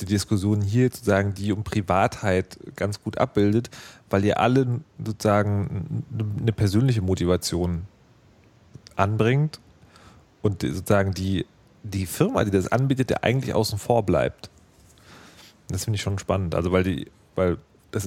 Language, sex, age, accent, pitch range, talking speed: German, male, 30-49, German, 95-120 Hz, 135 wpm